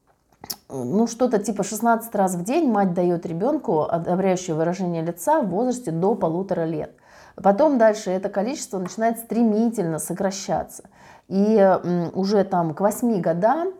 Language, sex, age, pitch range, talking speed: Russian, female, 30-49, 175-225 Hz, 135 wpm